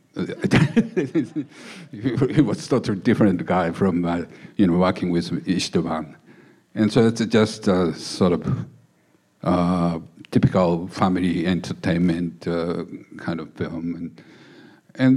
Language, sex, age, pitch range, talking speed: English, male, 60-79, 90-115 Hz, 120 wpm